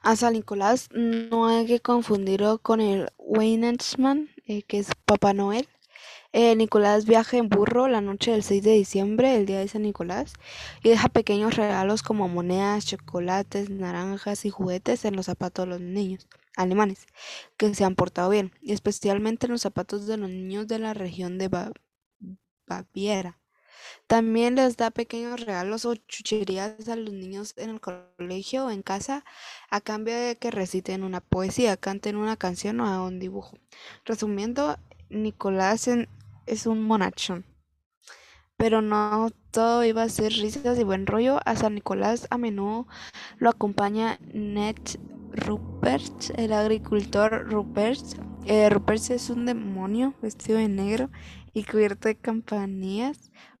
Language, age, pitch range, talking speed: Spanish, 10-29, 195-230 Hz, 150 wpm